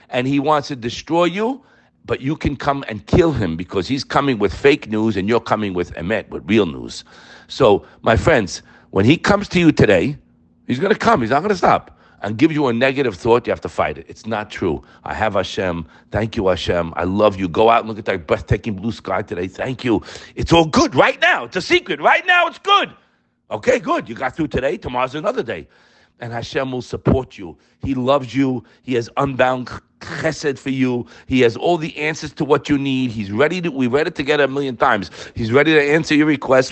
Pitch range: 115-170 Hz